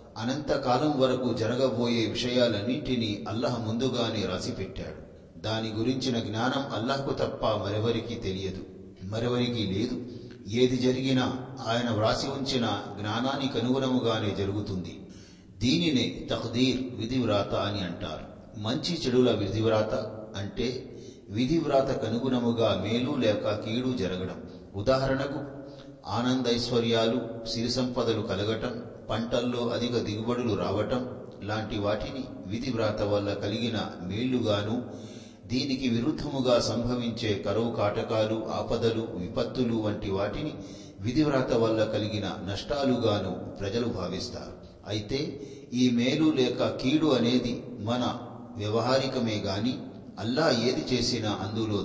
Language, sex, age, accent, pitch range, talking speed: Telugu, male, 40-59, native, 105-125 Hz, 95 wpm